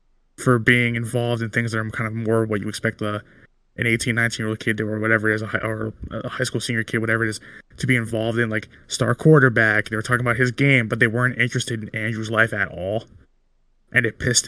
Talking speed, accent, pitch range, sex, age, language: 255 wpm, American, 110-125 Hz, male, 20-39, English